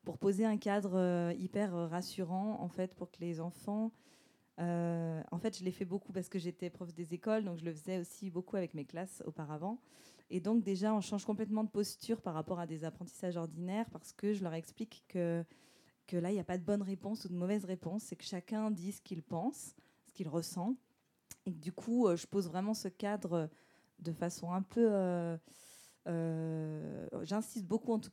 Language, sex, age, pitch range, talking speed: French, female, 20-39, 170-205 Hz, 210 wpm